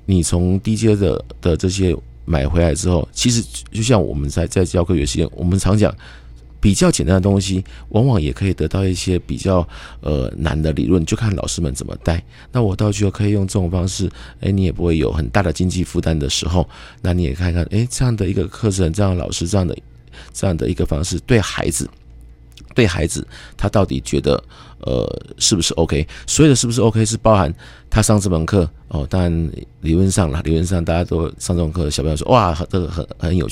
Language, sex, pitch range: Chinese, male, 80-100 Hz